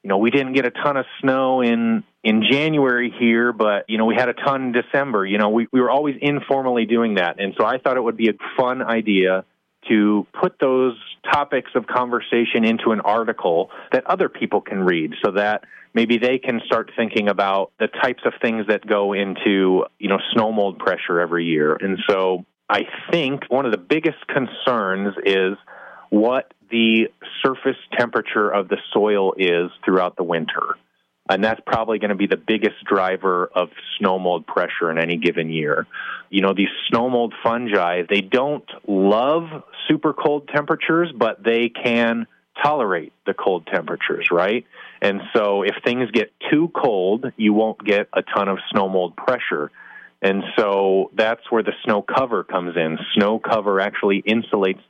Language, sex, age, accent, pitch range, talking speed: English, male, 30-49, American, 100-120 Hz, 180 wpm